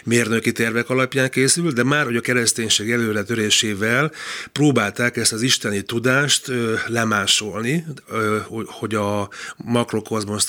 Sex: male